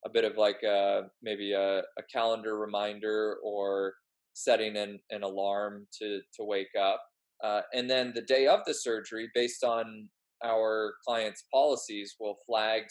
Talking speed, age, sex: 160 wpm, 20-39, male